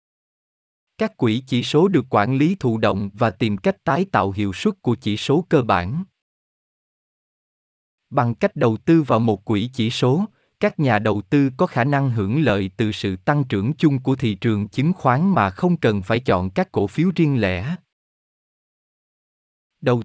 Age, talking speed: 20-39, 180 wpm